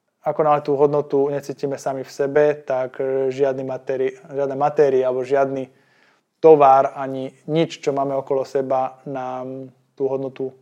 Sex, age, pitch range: male, 20-39, 130-145 Hz